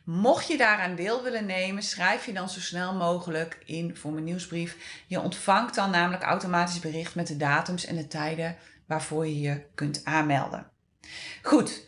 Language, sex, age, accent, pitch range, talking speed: Dutch, female, 30-49, Dutch, 170-235 Hz, 170 wpm